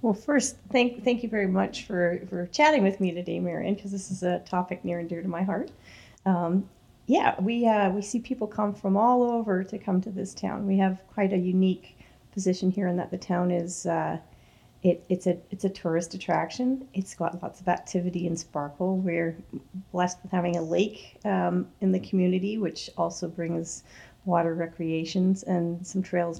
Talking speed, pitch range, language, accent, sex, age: 195 wpm, 175-200 Hz, English, American, female, 40-59